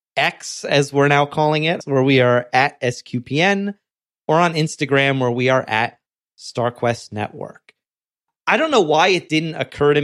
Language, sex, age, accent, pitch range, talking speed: English, male, 30-49, American, 120-170 Hz, 165 wpm